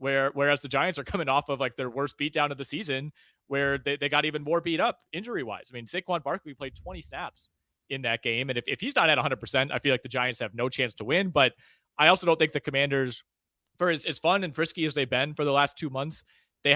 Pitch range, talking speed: 125-150 Hz, 260 wpm